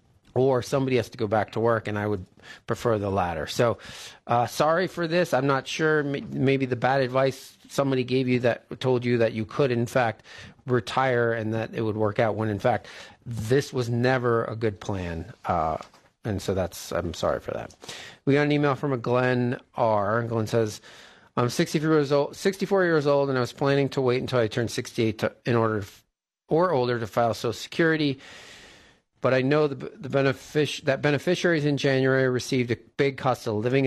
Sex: male